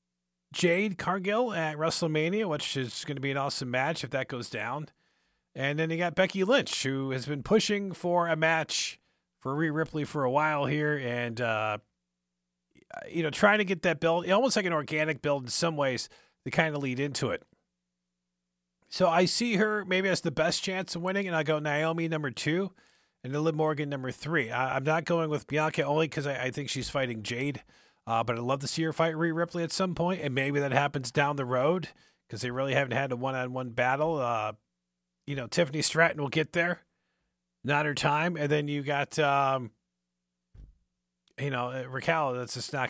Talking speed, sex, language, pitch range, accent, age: 205 wpm, male, English, 125-165 Hz, American, 40-59